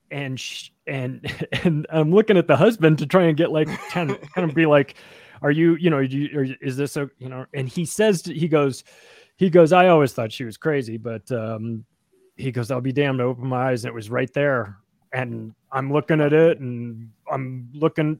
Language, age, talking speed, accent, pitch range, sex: English, 30-49, 210 wpm, American, 130-165 Hz, male